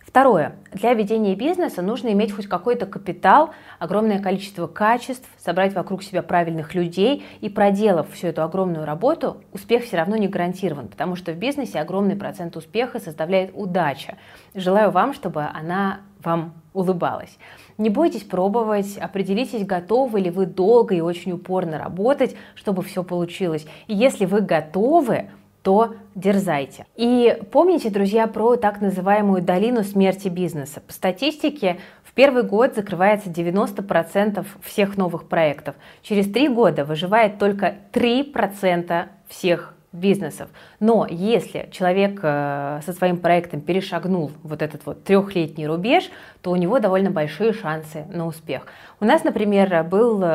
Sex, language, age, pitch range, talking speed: female, Russian, 30-49, 170-215 Hz, 140 wpm